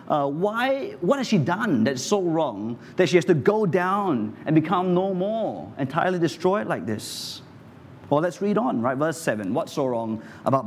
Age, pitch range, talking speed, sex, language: 30-49, 130-205 Hz, 190 wpm, male, English